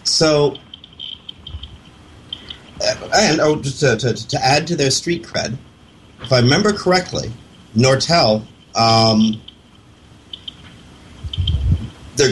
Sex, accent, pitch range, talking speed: male, American, 105-140 Hz, 90 wpm